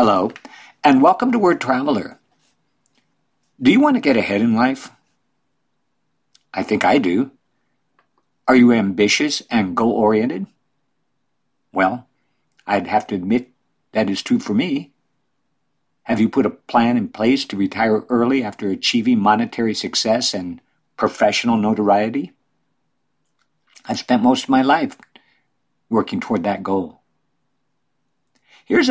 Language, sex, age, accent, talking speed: English, male, 60-79, American, 125 wpm